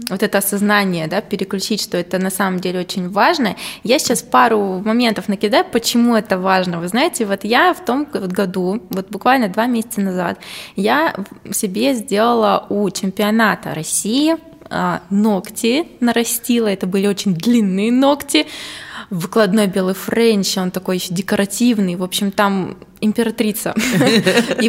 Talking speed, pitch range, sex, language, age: 140 wpm, 195-235 Hz, female, Russian, 20-39